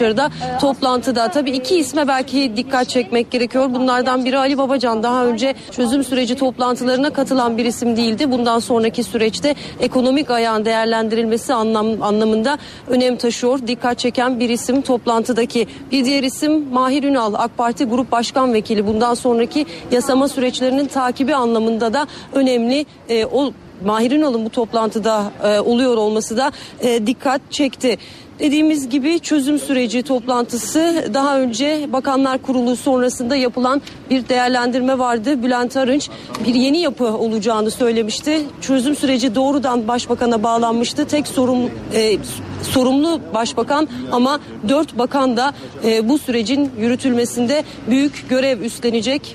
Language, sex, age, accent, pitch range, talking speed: Turkish, female, 40-59, native, 235-270 Hz, 135 wpm